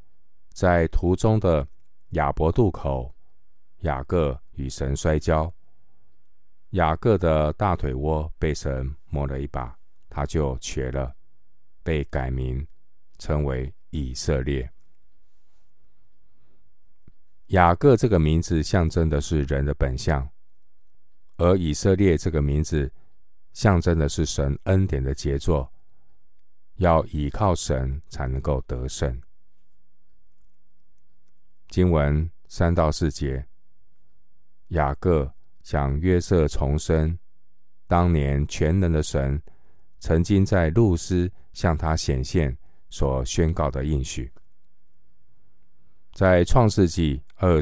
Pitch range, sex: 70-85 Hz, male